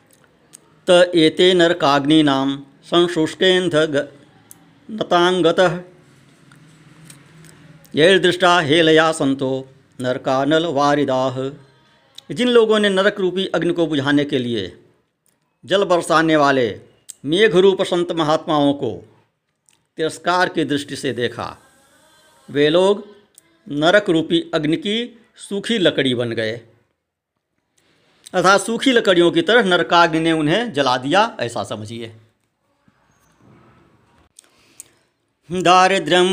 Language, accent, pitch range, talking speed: Hindi, native, 140-180 Hz, 90 wpm